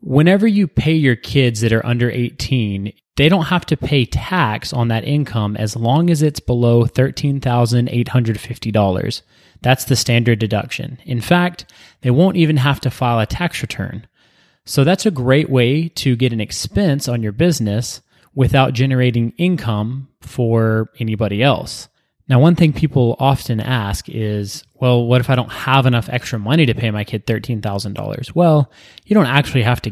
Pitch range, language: 115-140 Hz, English